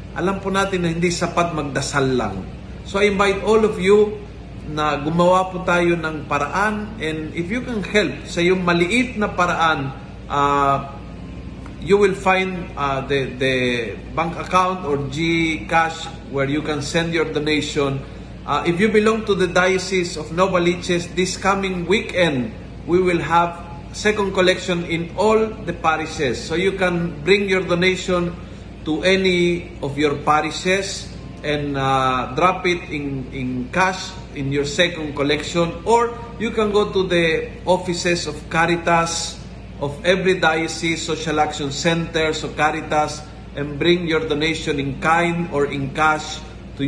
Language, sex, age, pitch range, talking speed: Filipino, male, 50-69, 145-180 Hz, 150 wpm